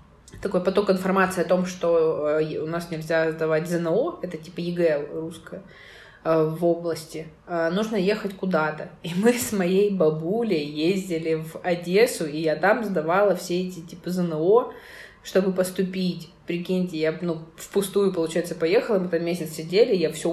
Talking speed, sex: 150 wpm, female